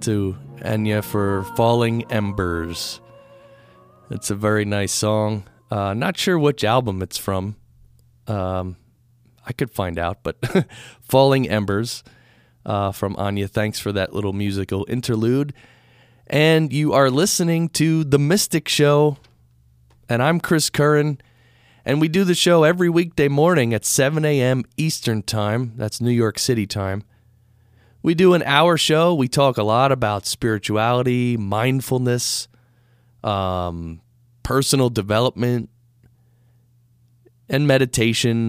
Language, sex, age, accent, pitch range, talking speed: English, male, 30-49, American, 105-135 Hz, 125 wpm